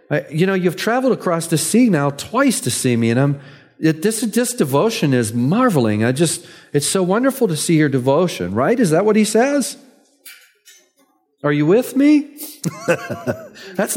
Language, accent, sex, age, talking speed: English, American, male, 40-59, 175 wpm